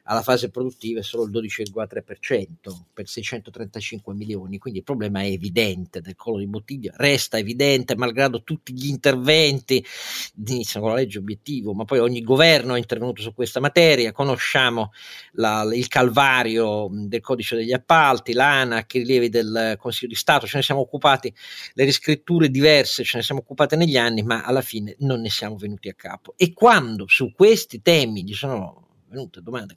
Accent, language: native, Italian